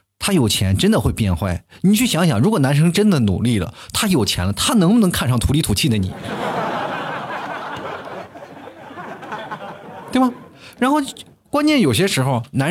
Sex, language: male, Chinese